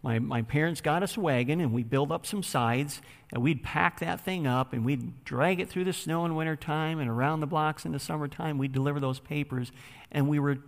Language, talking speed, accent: English, 235 wpm, American